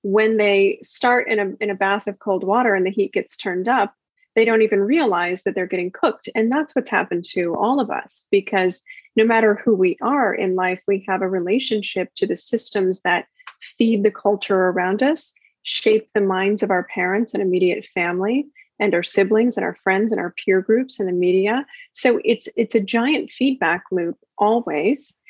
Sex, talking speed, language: female, 200 wpm, English